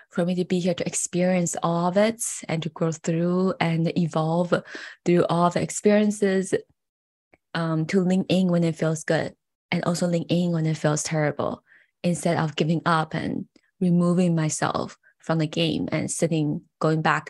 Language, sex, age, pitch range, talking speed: English, female, 20-39, 170-205 Hz, 175 wpm